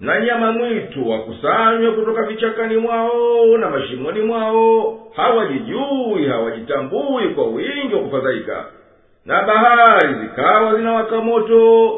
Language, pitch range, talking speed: Swahili, 225-255 Hz, 105 wpm